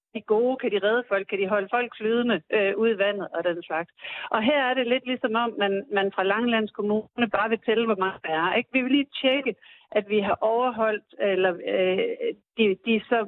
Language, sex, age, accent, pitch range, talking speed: Danish, female, 60-79, native, 185-230 Hz, 235 wpm